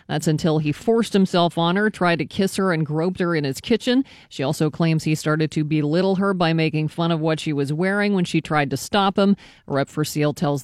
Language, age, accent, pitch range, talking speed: English, 40-59, American, 155-190 Hz, 245 wpm